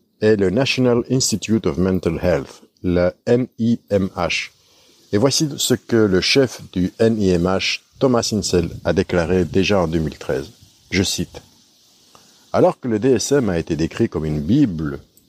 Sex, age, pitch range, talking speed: male, 60-79, 90-125 Hz, 145 wpm